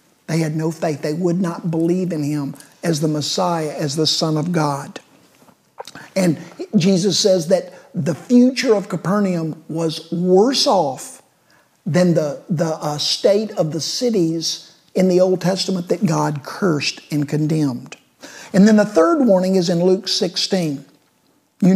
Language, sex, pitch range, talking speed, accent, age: English, male, 165-215 Hz, 155 wpm, American, 50-69